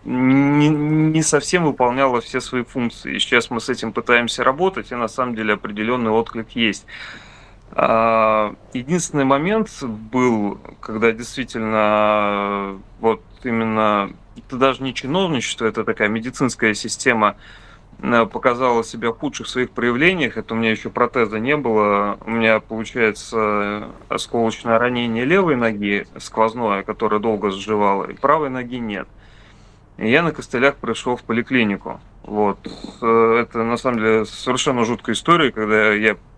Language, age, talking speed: Russian, 30-49, 135 wpm